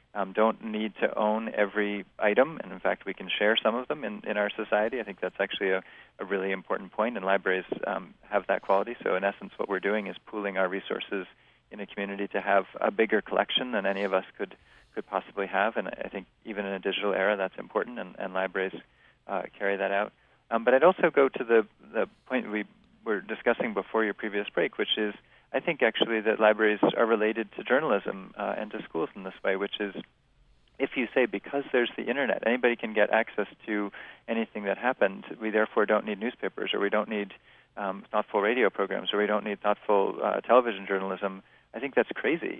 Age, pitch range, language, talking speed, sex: 40-59, 100-110 Hz, English, 215 wpm, male